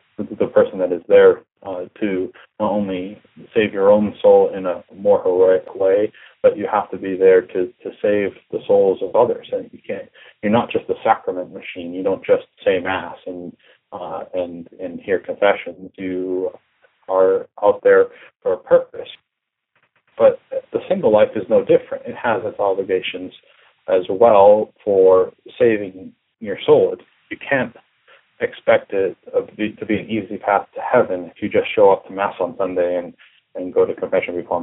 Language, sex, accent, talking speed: English, male, American, 175 wpm